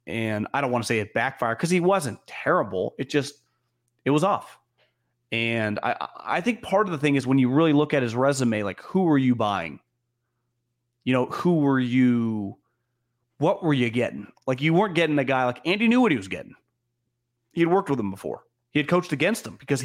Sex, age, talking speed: male, 30-49, 220 wpm